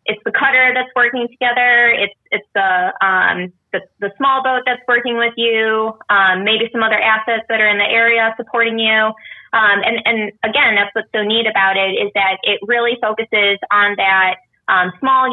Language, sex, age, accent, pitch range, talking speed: English, female, 20-39, American, 195-225 Hz, 190 wpm